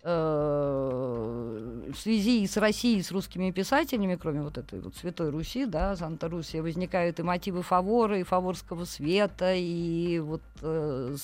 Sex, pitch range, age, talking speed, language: female, 160-195 Hz, 20-39, 135 wpm, Russian